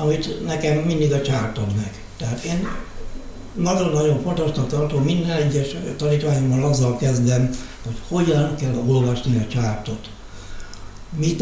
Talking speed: 125 wpm